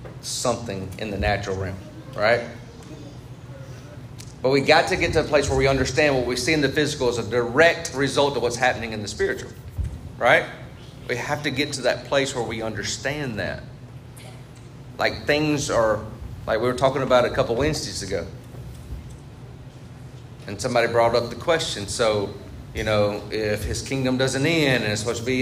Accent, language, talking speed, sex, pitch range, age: American, English, 180 wpm, male, 120-140 Hz, 40-59